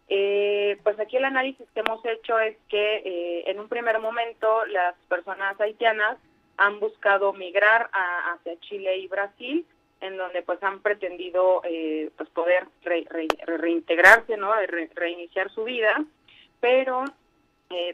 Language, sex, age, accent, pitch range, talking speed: Spanish, female, 30-49, Mexican, 175-225 Hz, 145 wpm